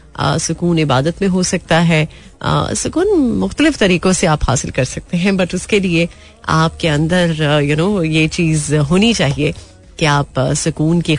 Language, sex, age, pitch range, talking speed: Hindi, female, 30-49, 150-190 Hz, 160 wpm